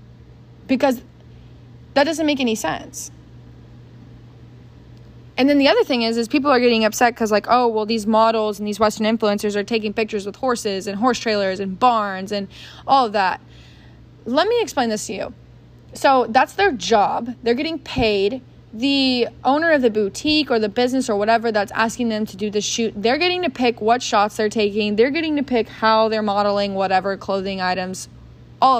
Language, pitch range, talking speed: English, 205-245 Hz, 190 wpm